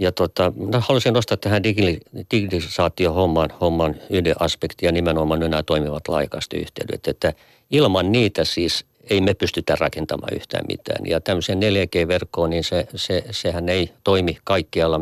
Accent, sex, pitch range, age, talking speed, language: native, male, 80-110 Hz, 50-69, 135 wpm, Finnish